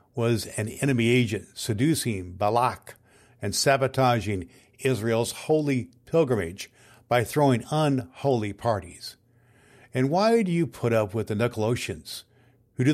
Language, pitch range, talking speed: English, 115-140 Hz, 120 wpm